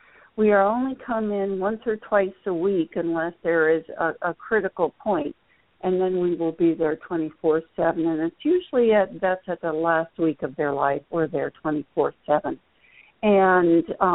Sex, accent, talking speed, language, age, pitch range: female, American, 185 wpm, English, 60-79, 160-195 Hz